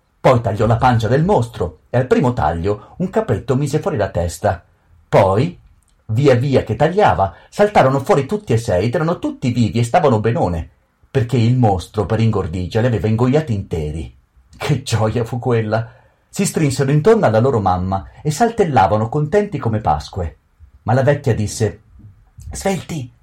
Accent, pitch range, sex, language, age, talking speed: native, 100-140 Hz, male, Italian, 40-59, 160 wpm